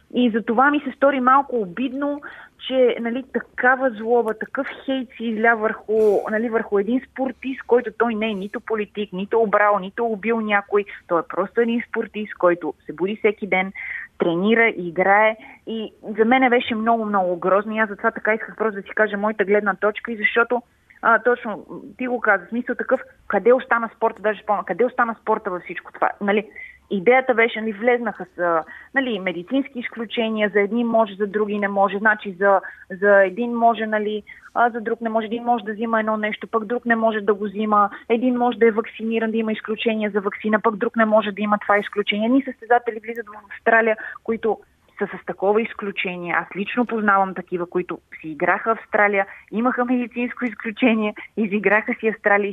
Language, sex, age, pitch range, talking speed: Bulgarian, female, 30-49, 205-235 Hz, 190 wpm